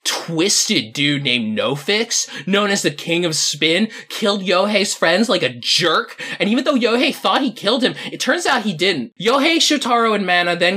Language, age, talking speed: English, 20-39, 190 wpm